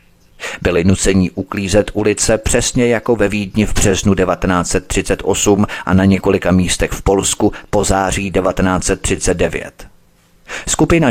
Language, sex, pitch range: Czech, male, 90-110 Hz